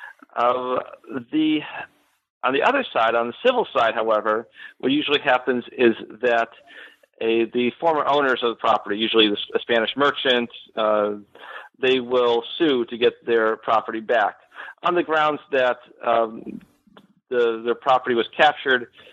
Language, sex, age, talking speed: English, male, 50-69, 135 wpm